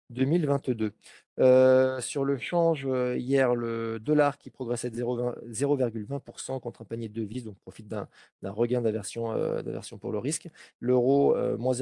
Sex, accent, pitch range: male, French, 115-130 Hz